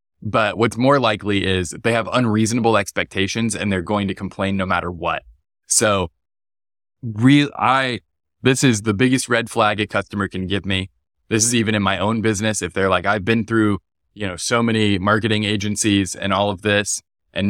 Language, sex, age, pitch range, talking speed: English, male, 20-39, 95-115 Hz, 190 wpm